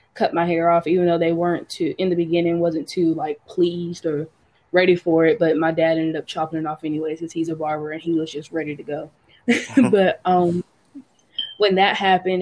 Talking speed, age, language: 215 wpm, 20-39, English